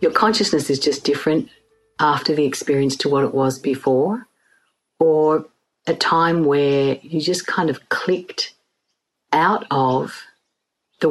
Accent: Australian